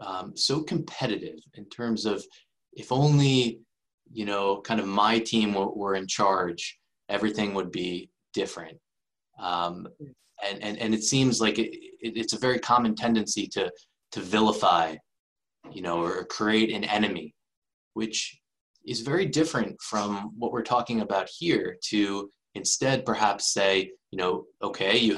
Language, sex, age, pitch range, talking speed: English, male, 20-39, 105-130 Hz, 150 wpm